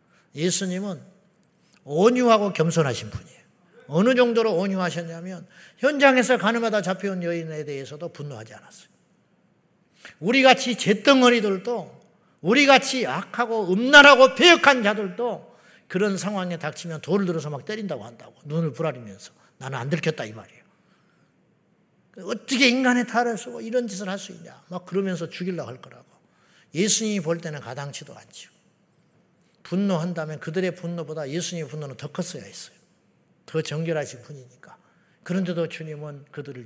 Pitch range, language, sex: 155-200 Hz, Korean, male